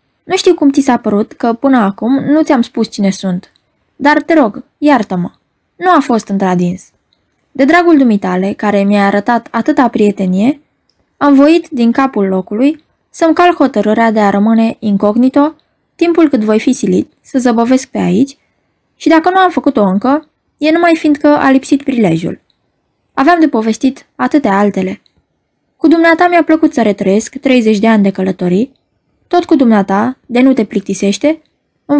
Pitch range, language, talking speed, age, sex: 210-295 Hz, Romanian, 160 wpm, 20-39, female